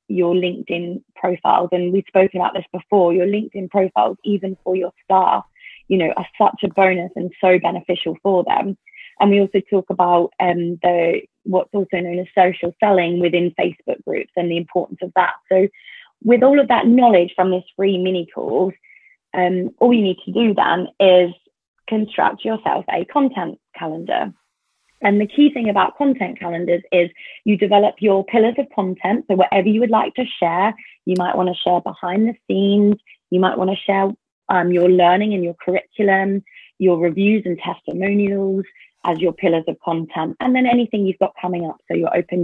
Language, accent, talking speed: English, British, 185 wpm